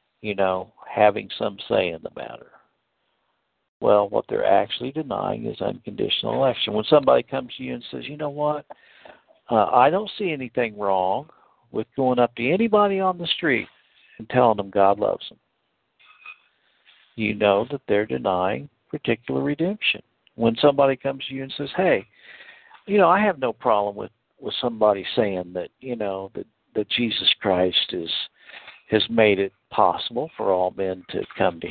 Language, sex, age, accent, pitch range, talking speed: English, male, 60-79, American, 100-145 Hz, 170 wpm